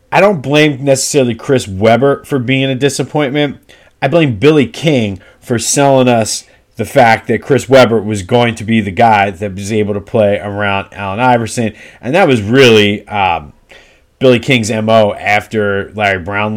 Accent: American